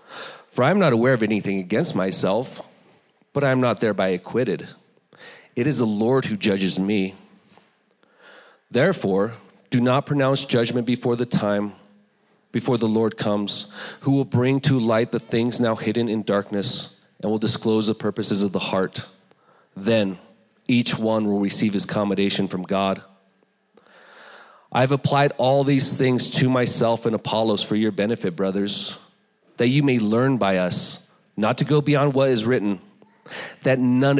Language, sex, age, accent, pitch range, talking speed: English, male, 30-49, Canadian, 105-155 Hz, 160 wpm